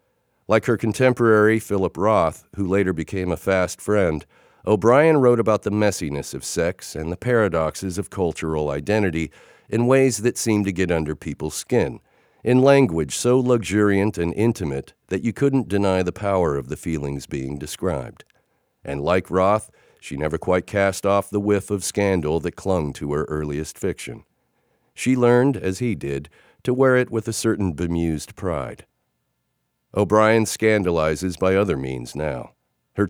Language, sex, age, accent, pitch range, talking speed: English, male, 50-69, American, 85-110 Hz, 160 wpm